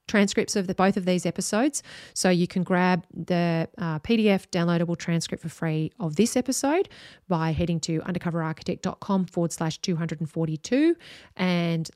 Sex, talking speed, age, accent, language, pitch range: female, 145 wpm, 30-49, Australian, English, 165-200 Hz